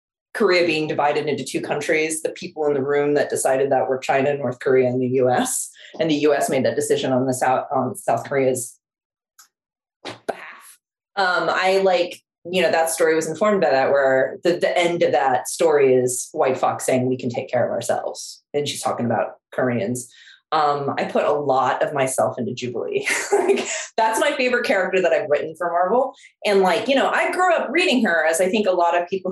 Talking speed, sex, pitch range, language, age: 205 wpm, female, 155-255 Hz, English, 20-39